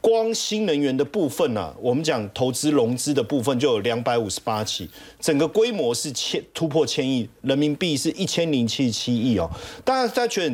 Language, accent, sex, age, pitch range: Chinese, native, male, 40-59, 135-225 Hz